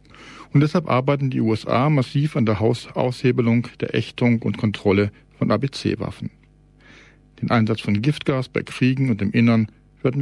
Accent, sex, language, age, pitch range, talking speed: German, male, German, 40-59, 110-135 Hz, 145 wpm